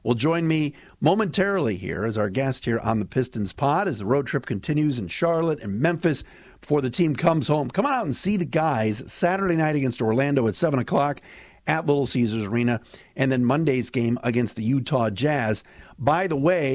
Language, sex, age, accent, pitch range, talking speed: English, male, 50-69, American, 115-155 Hz, 200 wpm